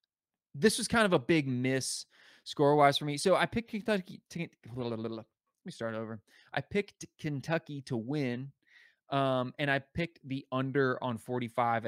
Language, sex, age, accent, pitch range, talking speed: English, male, 20-39, American, 110-145 Hz, 165 wpm